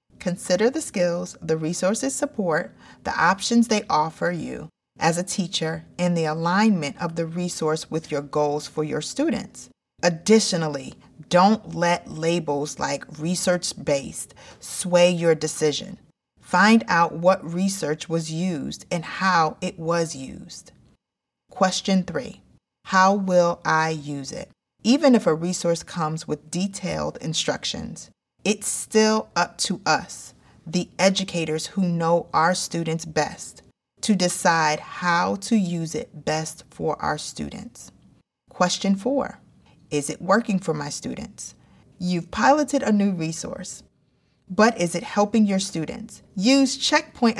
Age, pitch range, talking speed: 30-49, 160-195 Hz, 130 wpm